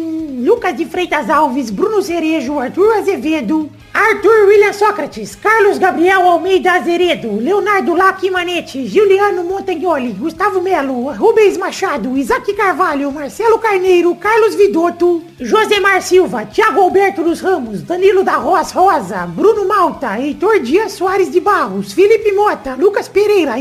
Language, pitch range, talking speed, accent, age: Portuguese, 315-395 Hz, 130 wpm, Brazilian, 40-59